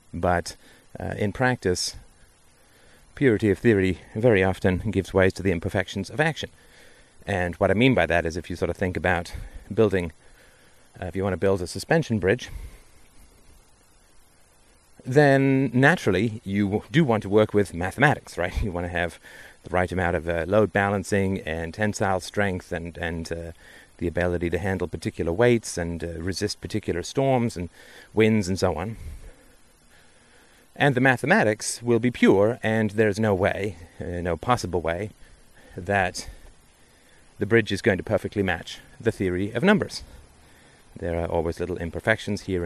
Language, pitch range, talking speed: English, 85-110 Hz, 160 wpm